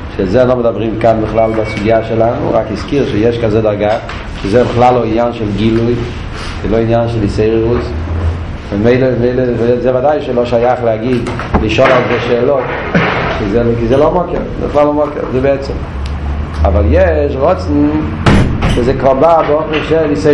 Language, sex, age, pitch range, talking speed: Hebrew, male, 40-59, 95-135 Hz, 155 wpm